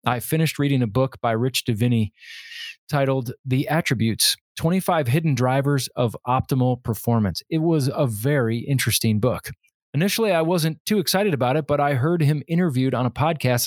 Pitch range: 120-160 Hz